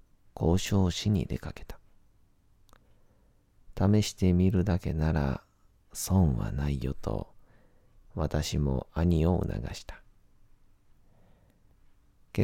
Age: 40-59